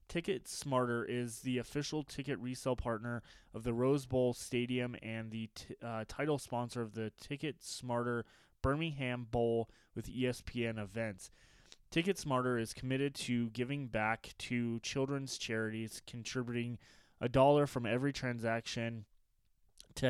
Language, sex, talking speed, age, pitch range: English, male, 135 wpm, 20-39, 115-135 Hz